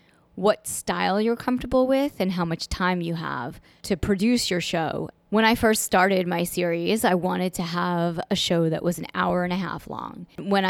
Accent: American